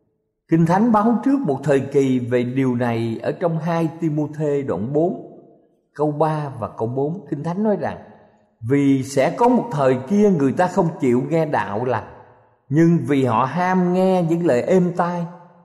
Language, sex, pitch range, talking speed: Vietnamese, male, 125-180 Hz, 180 wpm